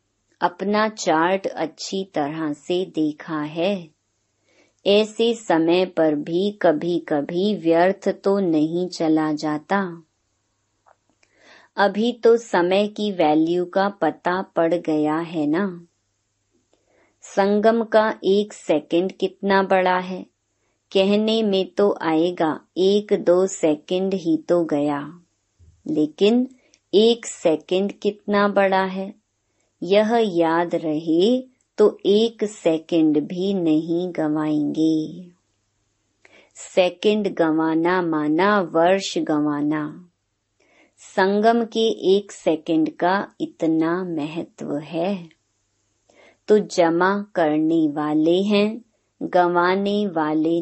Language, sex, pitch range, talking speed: Hindi, male, 155-200 Hz, 95 wpm